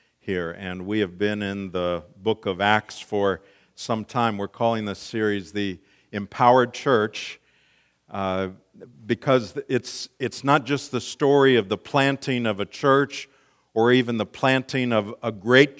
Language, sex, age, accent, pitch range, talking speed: English, male, 50-69, American, 100-125 Hz, 155 wpm